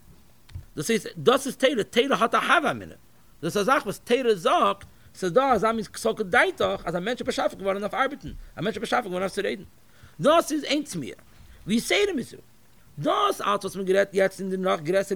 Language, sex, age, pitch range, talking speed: English, male, 50-69, 175-245 Hz, 195 wpm